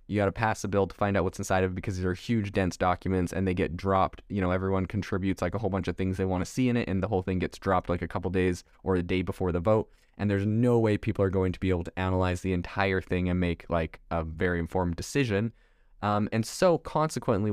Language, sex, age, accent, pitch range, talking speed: English, male, 20-39, American, 95-105 Hz, 275 wpm